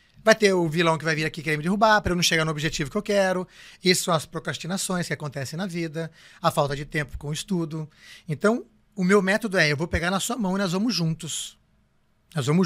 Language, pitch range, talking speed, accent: Portuguese, 150-205 Hz, 245 wpm, Brazilian